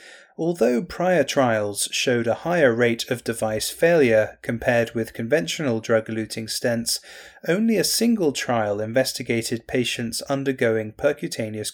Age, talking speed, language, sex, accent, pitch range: 30-49, 120 wpm, English, male, British, 110-135 Hz